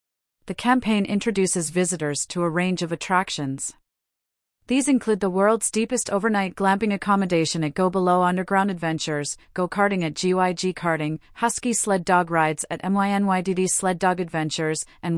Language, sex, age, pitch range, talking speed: English, female, 30-49, 160-195 Hz, 145 wpm